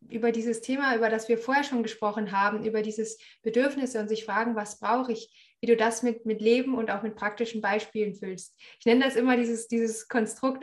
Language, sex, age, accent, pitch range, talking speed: German, female, 20-39, German, 215-240 Hz, 215 wpm